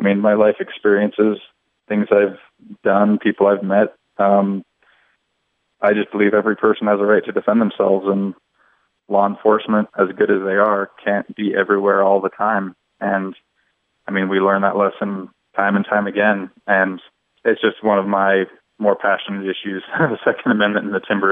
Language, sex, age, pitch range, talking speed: English, male, 20-39, 95-105 Hz, 180 wpm